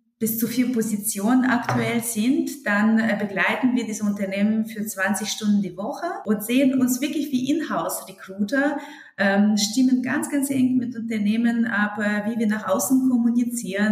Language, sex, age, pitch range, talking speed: German, female, 30-49, 195-255 Hz, 150 wpm